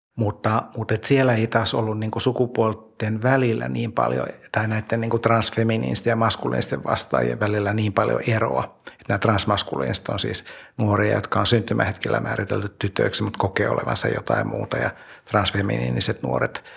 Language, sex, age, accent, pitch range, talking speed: Finnish, male, 60-79, native, 105-115 Hz, 145 wpm